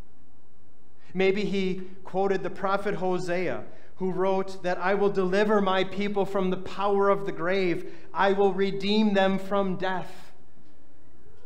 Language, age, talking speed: English, 30-49, 135 wpm